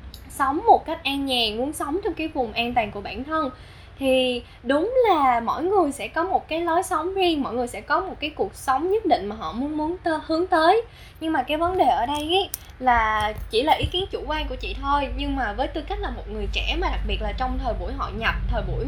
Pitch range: 255-355 Hz